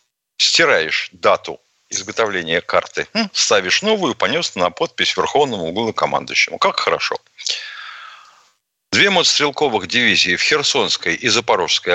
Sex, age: male, 60-79